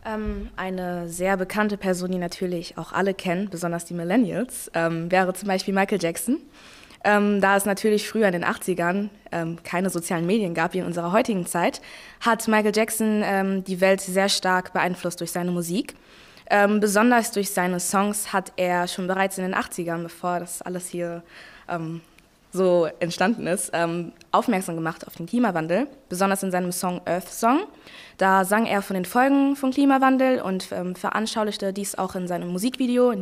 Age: 20-39